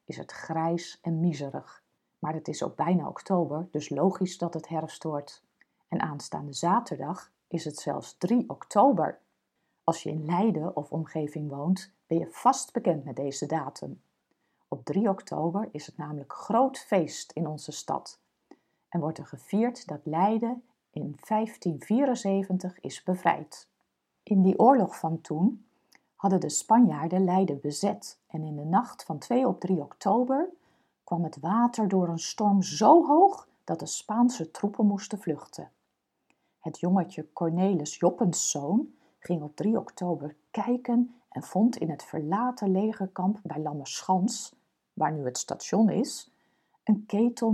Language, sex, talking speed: Dutch, female, 150 wpm